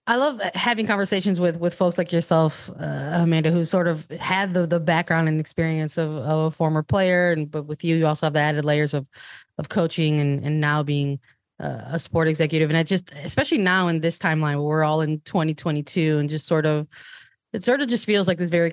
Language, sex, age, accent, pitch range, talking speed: English, female, 20-39, American, 155-180 Hz, 225 wpm